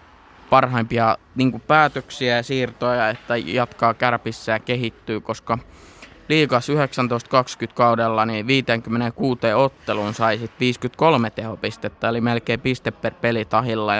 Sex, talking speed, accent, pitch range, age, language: male, 110 wpm, native, 115-130 Hz, 20-39, Finnish